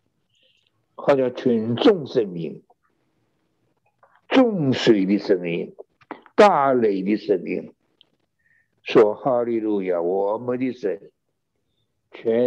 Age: 60-79